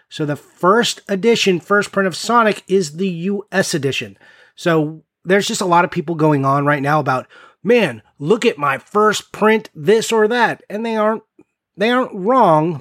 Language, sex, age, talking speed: English, male, 30-49, 185 wpm